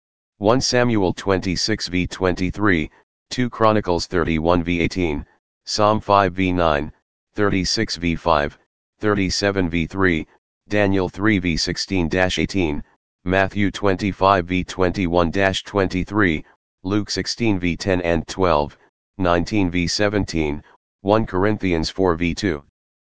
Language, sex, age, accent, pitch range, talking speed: English, male, 40-59, American, 80-100 Hz, 110 wpm